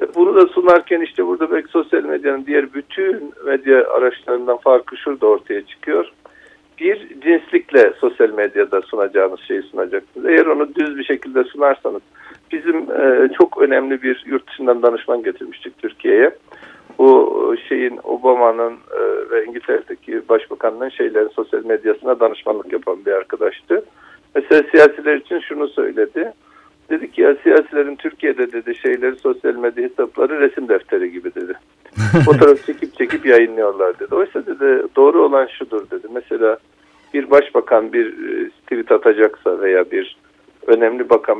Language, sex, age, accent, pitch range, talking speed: Turkish, male, 50-69, native, 330-425 Hz, 130 wpm